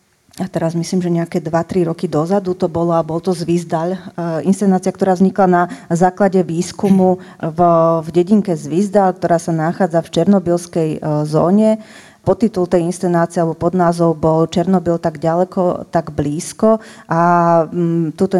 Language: Slovak